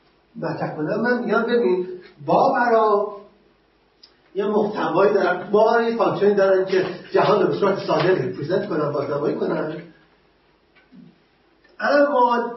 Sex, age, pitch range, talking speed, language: male, 40-59, 175-215 Hz, 150 wpm, Persian